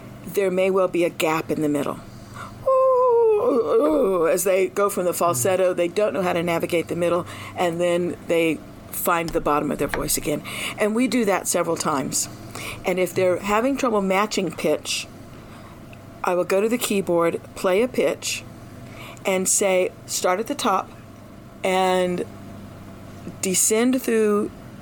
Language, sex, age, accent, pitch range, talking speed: English, female, 50-69, American, 135-190 Hz, 155 wpm